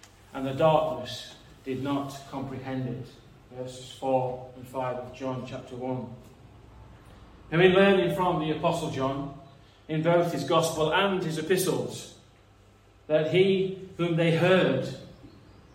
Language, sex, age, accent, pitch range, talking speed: English, male, 40-59, British, 120-180 Hz, 130 wpm